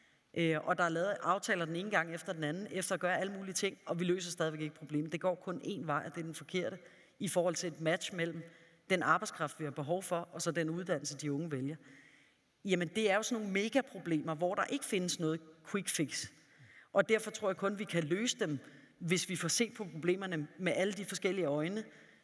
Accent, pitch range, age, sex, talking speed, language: native, 165-210 Hz, 30-49, female, 230 wpm, Danish